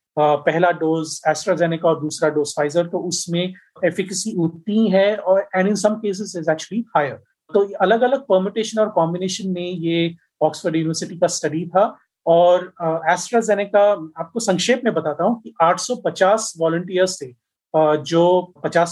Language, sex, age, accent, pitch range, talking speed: Hindi, male, 30-49, native, 160-195 Hz, 145 wpm